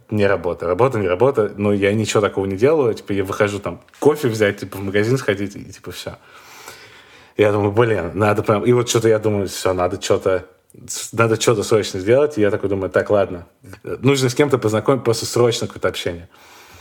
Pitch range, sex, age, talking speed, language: 100-130 Hz, male, 30-49, 200 wpm, Russian